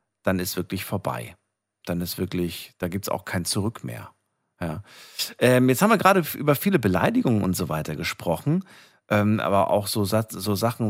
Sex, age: male, 50-69